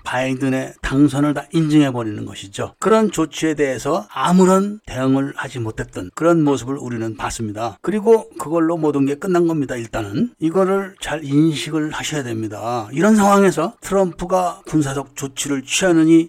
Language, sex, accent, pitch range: Korean, male, native, 135-180 Hz